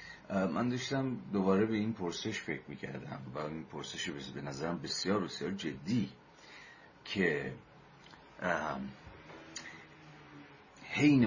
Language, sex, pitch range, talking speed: Persian, male, 75-95 Hz, 100 wpm